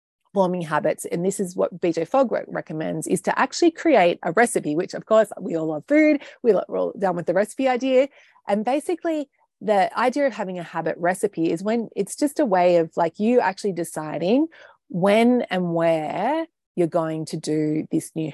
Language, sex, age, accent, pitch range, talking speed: English, female, 30-49, Australian, 165-205 Hz, 190 wpm